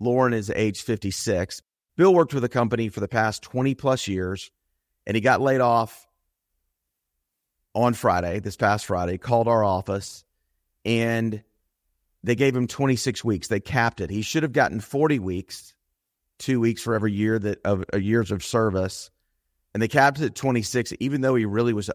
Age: 40-59